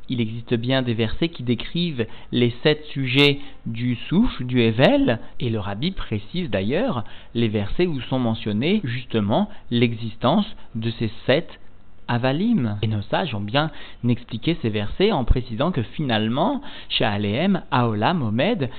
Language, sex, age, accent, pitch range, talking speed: French, male, 40-59, French, 110-145 Hz, 145 wpm